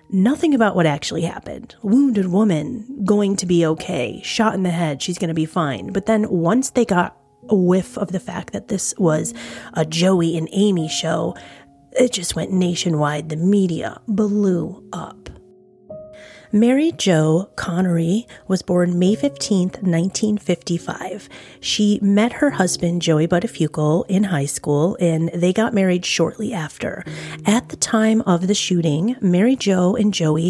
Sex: female